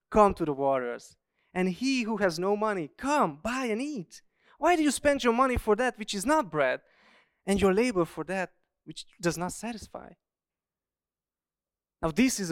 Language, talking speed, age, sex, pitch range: English, 180 wpm, 20-39, male, 150-215 Hz